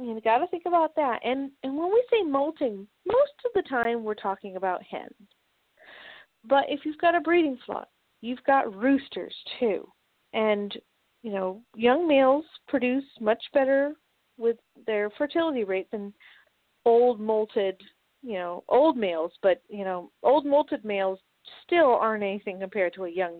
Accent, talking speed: American, 160 wpm